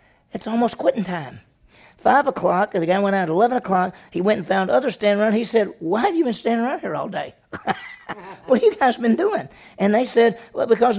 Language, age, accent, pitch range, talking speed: English, 40-59, American, 175-220 Hz, 230 wpm